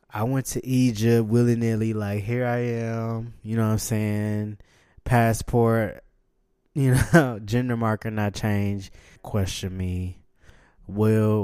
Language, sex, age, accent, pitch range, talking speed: English, male, 20-39, American, 95-115 Hz, 125 wpm